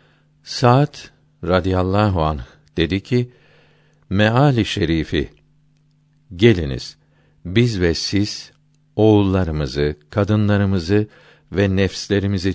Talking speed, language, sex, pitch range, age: 70 wpm, Turkish, male, 80-120 Hz, 60-79